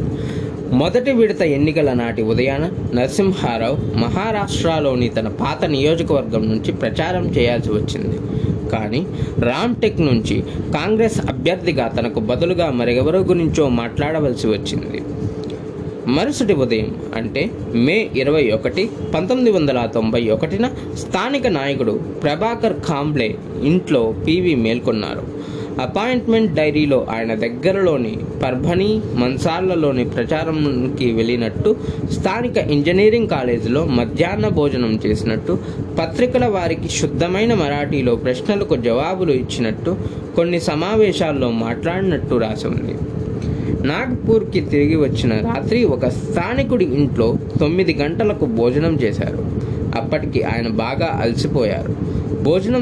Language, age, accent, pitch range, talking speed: Telugu, 20-39, native, 115-170 Hz, 95 wpm